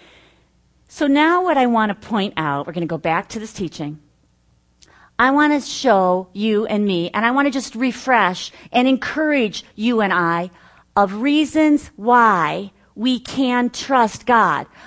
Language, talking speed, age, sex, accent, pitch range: English, 165 wpm, 40-59, female, American, 165-250 Hz